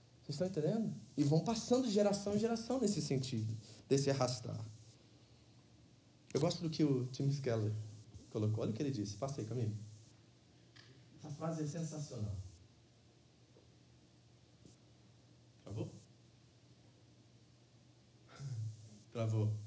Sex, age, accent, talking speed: male, 20-39, Brazilian, 100 wpm